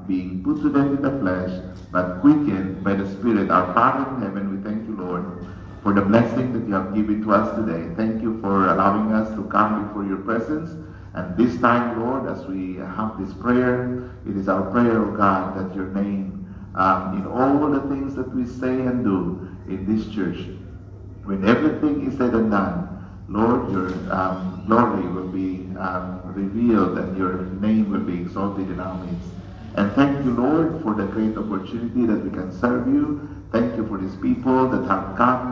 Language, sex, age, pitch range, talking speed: English, male, 50-69, 95-110 Hz, 200 wpm